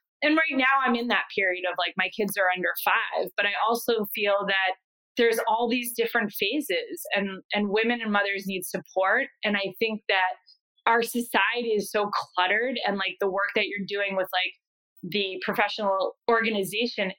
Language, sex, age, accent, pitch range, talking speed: English, female, 20-39, American, 205-245 Hz, 180 wpm